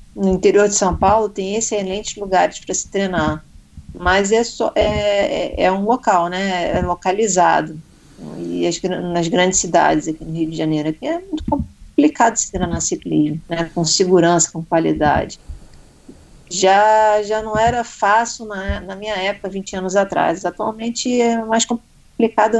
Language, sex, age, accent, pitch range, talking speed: Portuguese, female, 40-59, Brazilian, 175-225 Hz, 160 wpm